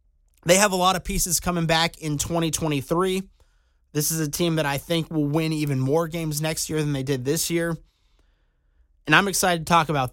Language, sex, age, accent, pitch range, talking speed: English, male, 30-49, American, 155-195 Hz, 205 wpm